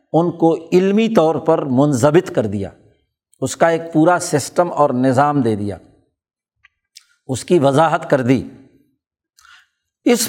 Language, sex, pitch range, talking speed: Urdu, male, 140-185 Hz, 135 wpm